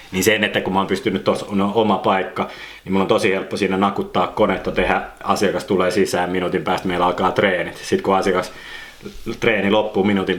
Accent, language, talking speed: native, Finnish, 190 wpm